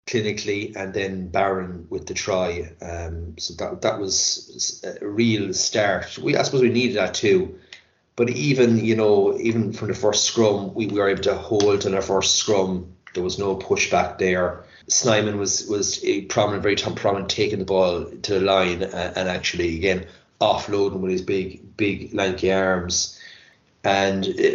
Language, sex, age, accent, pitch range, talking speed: English, male, 30-49, Irish, 95-125 Hz, 175 wpm